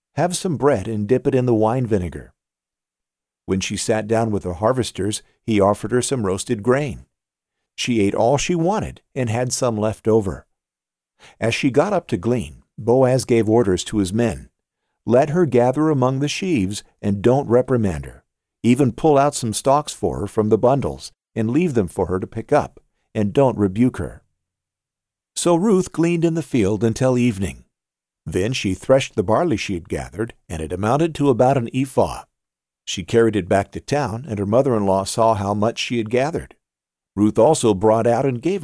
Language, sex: English, male